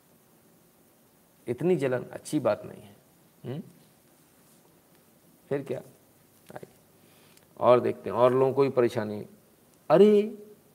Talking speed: 95 wpm